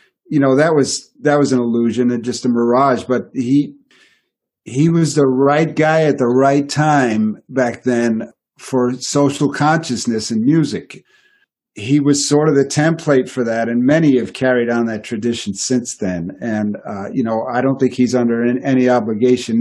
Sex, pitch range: male, 115-145 Hz